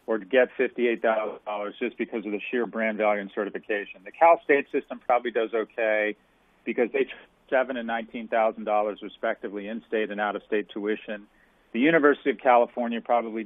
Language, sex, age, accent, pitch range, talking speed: English, male, 40-59, American, 110-135 Hz, 180 wpm